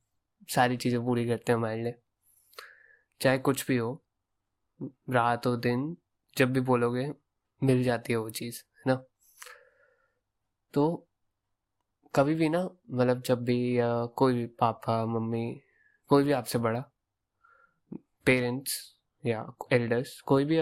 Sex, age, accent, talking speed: male, 20-39, Indian, 115 wpm